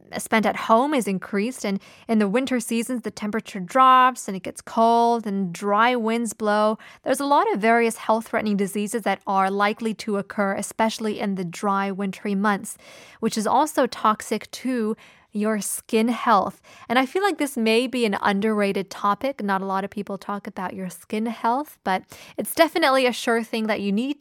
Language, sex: Korean, female